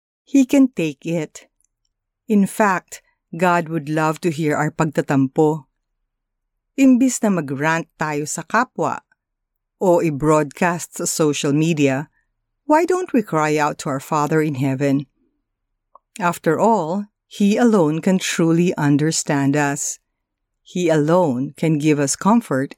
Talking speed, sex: 125 wpm, female